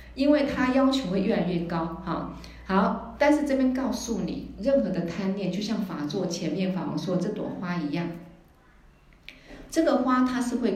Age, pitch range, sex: 50-69, 175-225 Hz, female